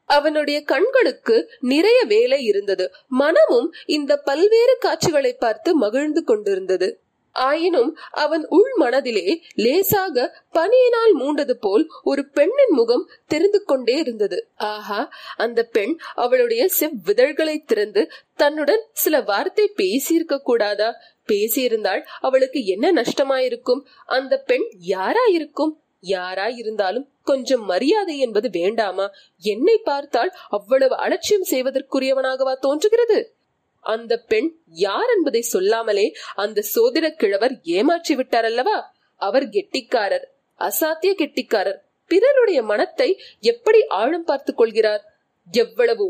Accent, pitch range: native, 265-415 Hz